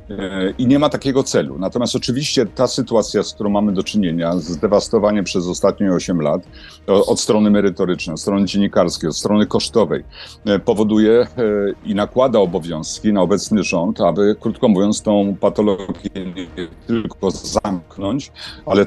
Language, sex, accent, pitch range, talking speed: Polish, male, native, 95-110 Hz, 140 wpm